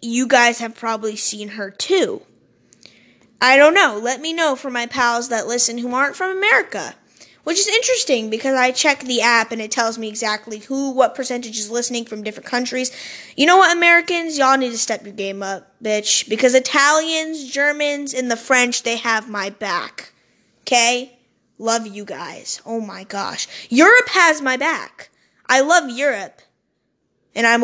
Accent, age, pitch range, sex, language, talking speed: American, 20-39, 215-270 Hz, female, English, 175 wpm